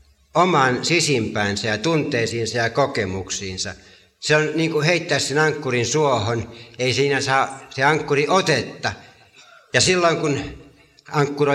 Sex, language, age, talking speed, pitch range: male, Finnish, 60-79, 125 wpm, 110-140 Hz